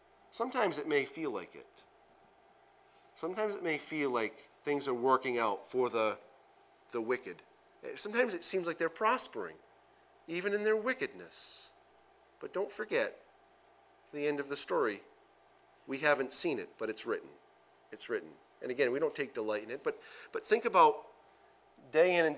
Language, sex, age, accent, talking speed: English, male, 40-59, American, 165 wpm